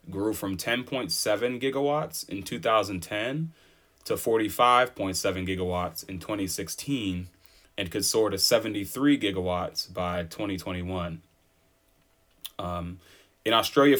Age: 30-49